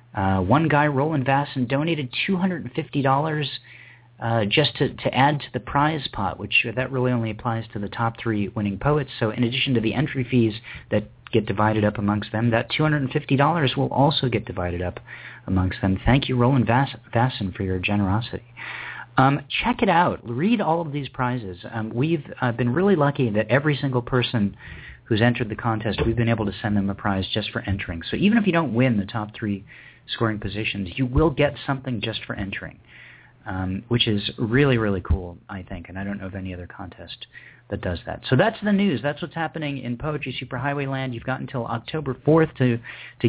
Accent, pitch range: American, 105-135 Hz